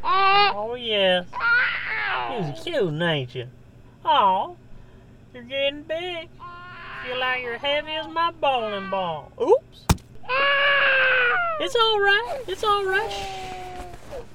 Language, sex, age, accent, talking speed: English, male, 30-49, American, 110 wpm